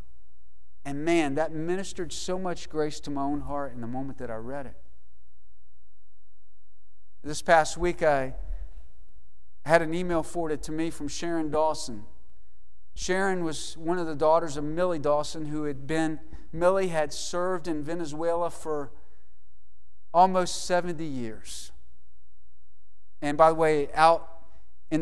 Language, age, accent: English, 50-69, American